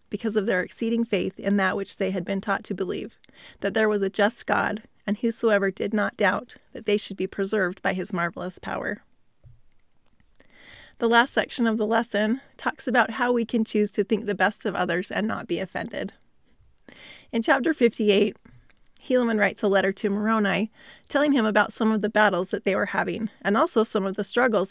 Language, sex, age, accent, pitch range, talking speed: English, female, 30-49, American, 205-240 Hz, 200 wpm